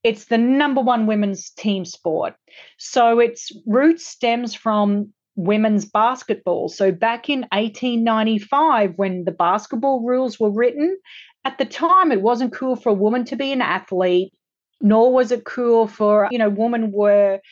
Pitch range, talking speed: 195-245 Hz, 160 wpm